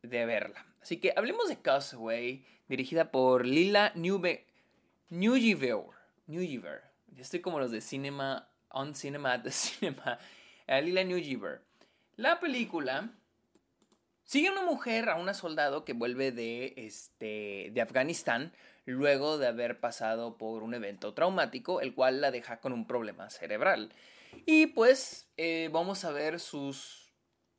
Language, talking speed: Spanish, 135 wpm